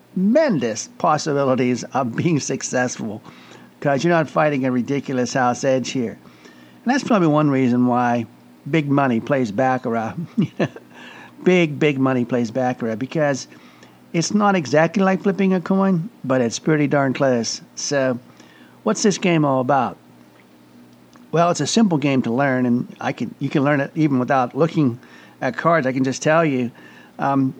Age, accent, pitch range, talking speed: 60-79, American, 125-170 Hz, 155 wpm